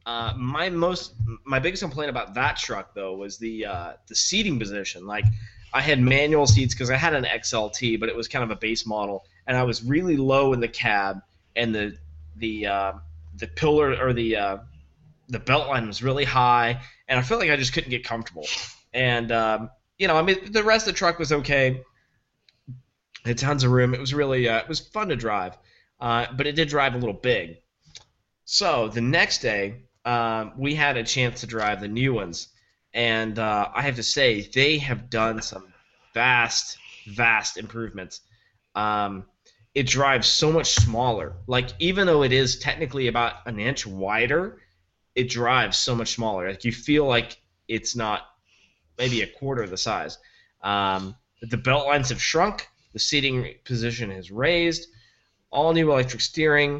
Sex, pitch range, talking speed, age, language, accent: male, 110-135 Hz, 185 wpm, 20-39, English, American